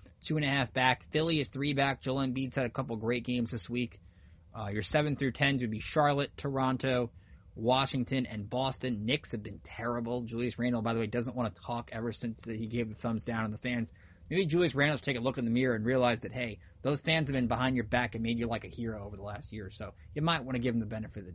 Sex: male